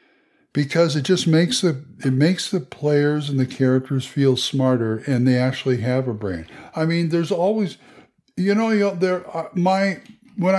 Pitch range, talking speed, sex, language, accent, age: 130-180 Hz, 180 wpm, male, English, American, 60-79